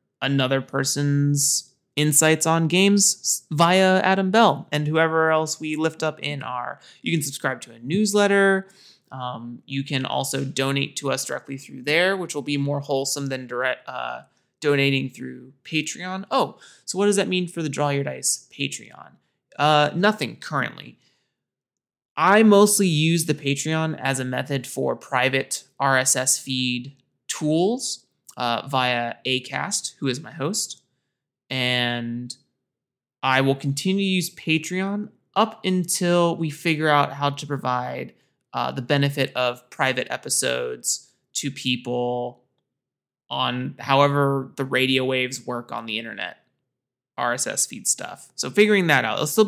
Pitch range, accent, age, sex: 130-165 Hz, American, 20-39, male